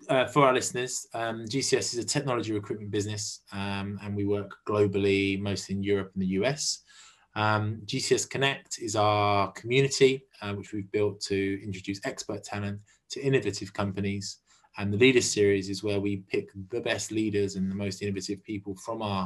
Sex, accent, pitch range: male, British, 100-110 Hz